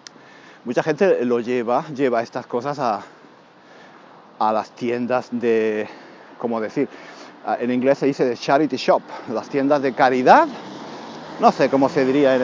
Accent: Spanish